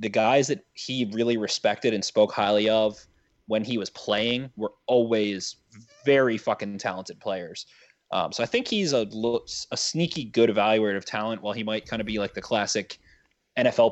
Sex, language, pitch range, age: male, English, 100-115 Hz, 20-39